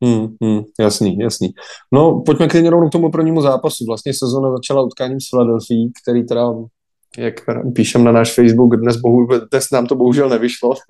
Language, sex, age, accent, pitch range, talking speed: Czech, male, 20-39, native, 120-135 Hz, 170 wpm